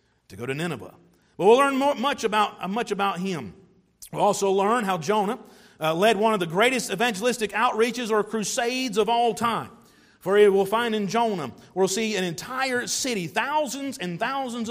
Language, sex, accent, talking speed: English, male, American, 170 wpm